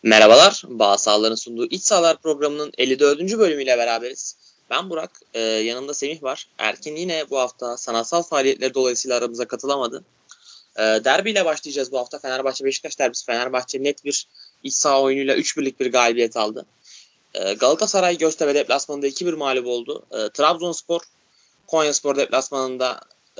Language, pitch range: Turkish, 120-155 Hz